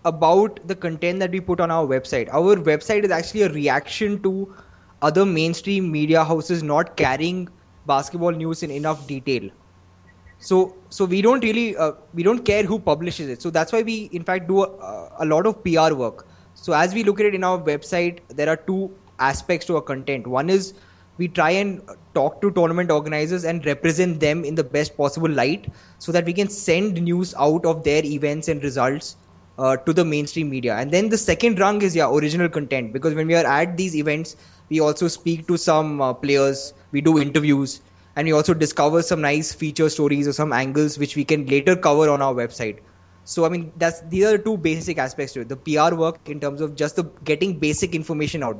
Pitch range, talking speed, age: 145-180 Hz, 210 wpm, 20-39